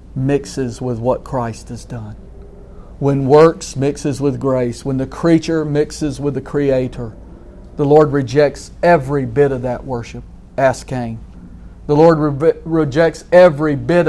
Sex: male